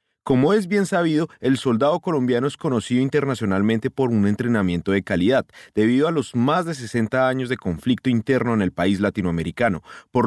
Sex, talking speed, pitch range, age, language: male, 175 wpm, 105-155 Hz, 30-49, Spanish